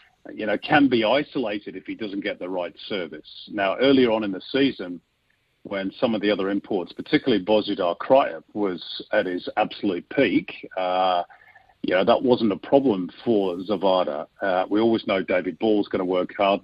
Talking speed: 185 wpm